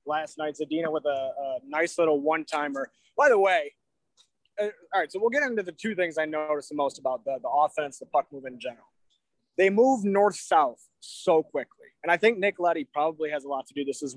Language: English